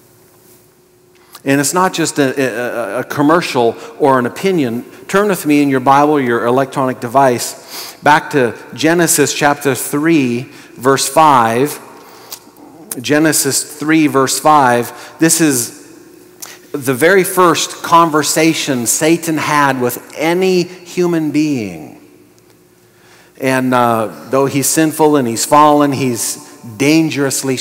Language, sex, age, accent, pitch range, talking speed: English, male, 50-69, American, 125-150 Hz, 115 wpm